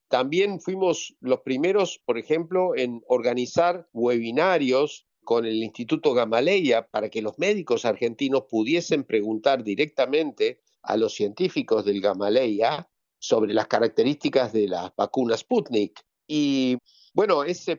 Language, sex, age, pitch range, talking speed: Spanish, male, 50-69, 130-200 Hz, 120 wpm